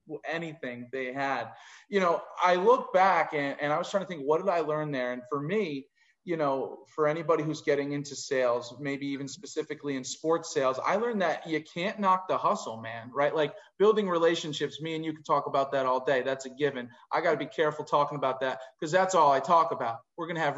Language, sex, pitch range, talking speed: English, male, 140-180 Hz, 230 wpm